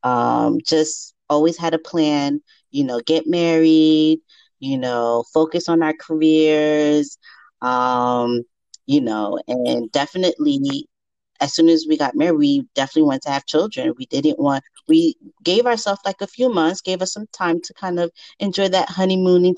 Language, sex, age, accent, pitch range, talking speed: English, female, 30-49, American, 145-190 Hz, 160 wpm